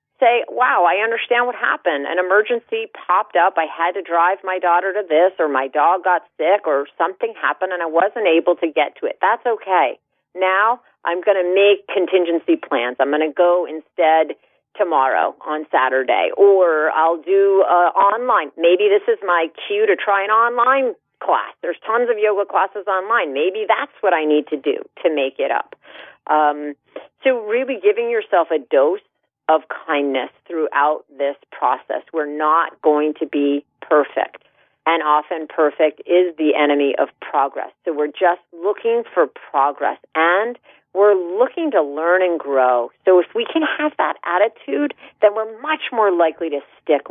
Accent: American